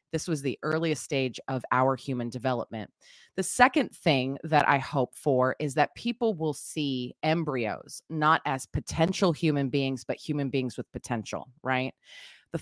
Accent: American